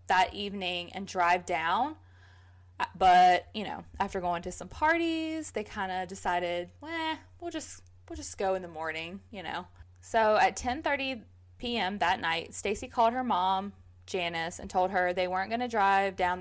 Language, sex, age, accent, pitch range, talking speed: English, female, 20-39, American, 170-210 Hz, 175 wpm